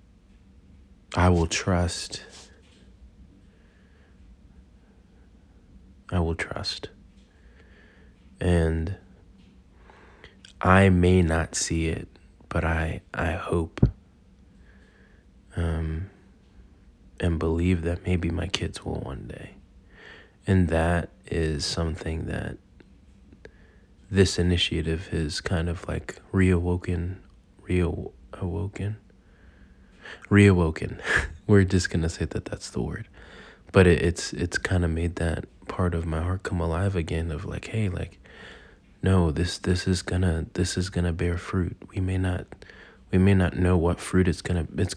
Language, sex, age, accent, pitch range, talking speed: English, male, 20-39, American, 85-95 Hz, 115 wpm